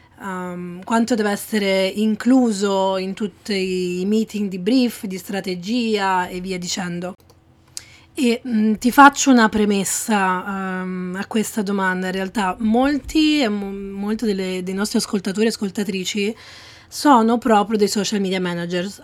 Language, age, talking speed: Italian, 20-39, 140 wpm